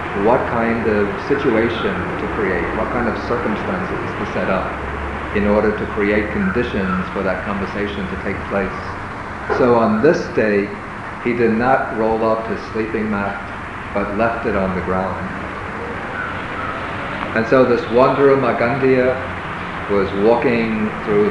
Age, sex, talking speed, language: 50-69, male, 140 wpm, English